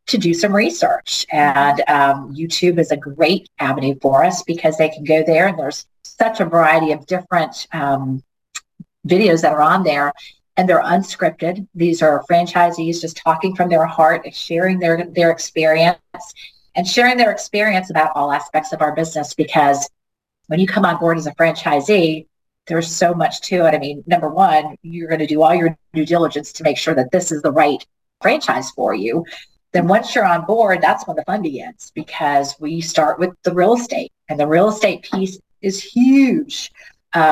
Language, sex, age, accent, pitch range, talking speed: English, female, 40-59, American, 155-180 Hz, 190 wpm